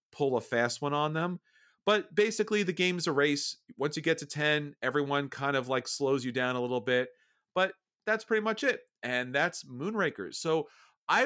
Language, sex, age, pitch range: English, male, 40-59, 125-175 Hz